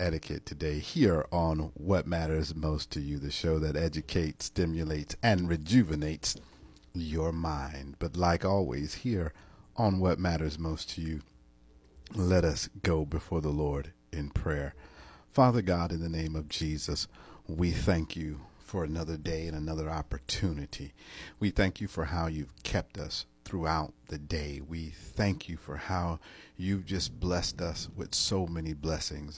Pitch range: 75-95 Hz